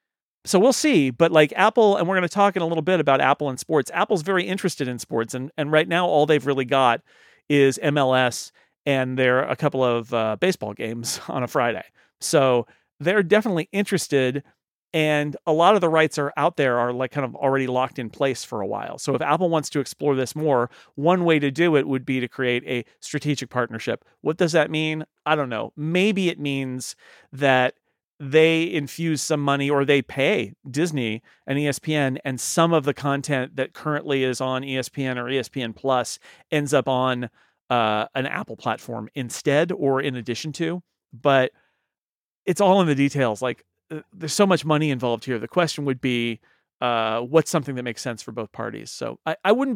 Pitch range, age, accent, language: 130-165 Hz, 40-59, American, English